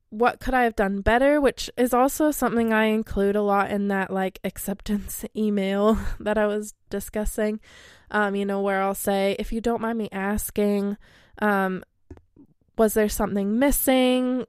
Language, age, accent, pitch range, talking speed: English, 20-39, American, 195-230 Hz, 165 wpm